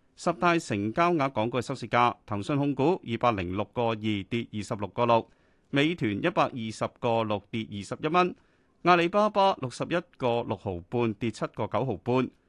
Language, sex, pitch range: Chinese, male, 105-150 Hz